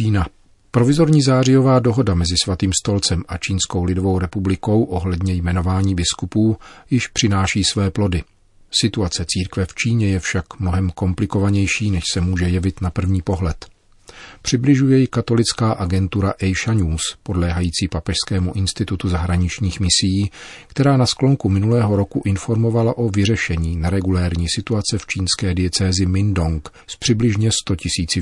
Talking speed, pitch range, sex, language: 130 wpm, 90-110 Hz, male, Czech